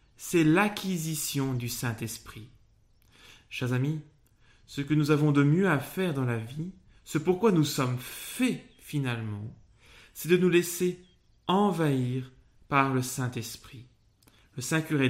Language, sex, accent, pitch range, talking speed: French, male, French, 120-160 Hz, 130 wpm